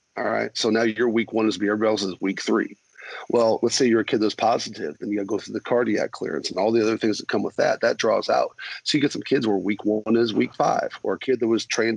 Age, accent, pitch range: 40-59, American, 105-115 Hz